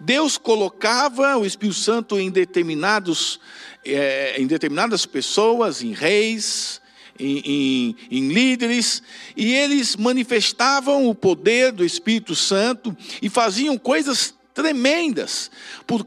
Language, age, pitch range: Portuguese, 50-69, 205-275 Hz